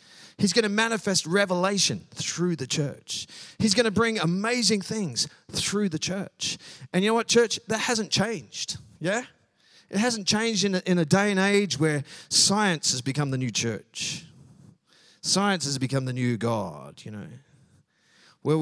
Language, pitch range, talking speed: English, 125-185 Hz, 165 wpm